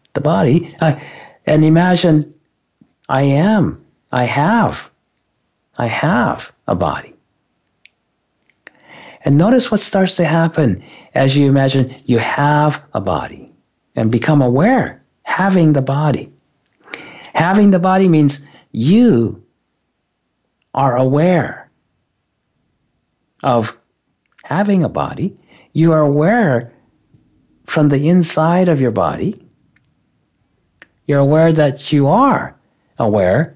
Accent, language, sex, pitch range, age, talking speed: American, English, male, 130-175 Hz, 60-79, 105 wpm